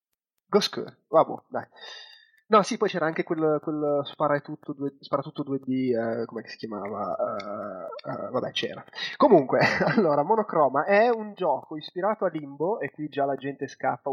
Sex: male